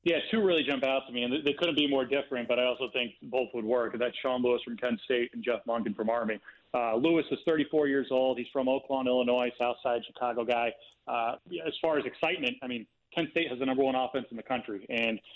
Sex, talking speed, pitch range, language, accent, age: male, 245 wpm, 120-140 Hz, English, American, 30-49